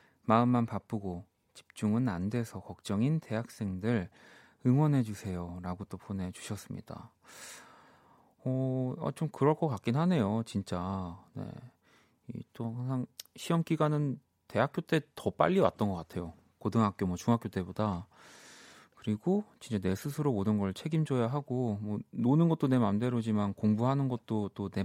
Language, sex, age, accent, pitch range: Korean, male, 30-49, native, 100-130 Hz